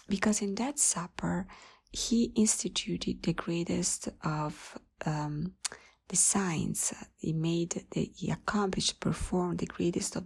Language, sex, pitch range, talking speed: English, female, 170-200 Hz, 115 wpm